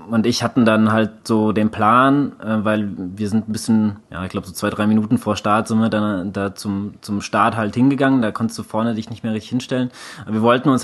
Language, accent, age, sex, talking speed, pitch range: German, German, 20-39, male, 240 wpm, 105-125 Hz